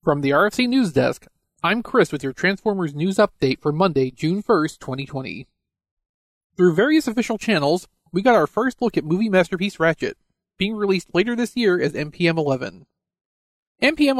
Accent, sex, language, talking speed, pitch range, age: American, male, English, 165 wpm, 150-215 Hz, 40-59